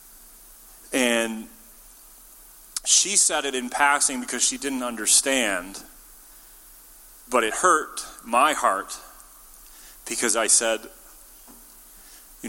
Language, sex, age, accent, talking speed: English, male, 30-49, American, 90 wpm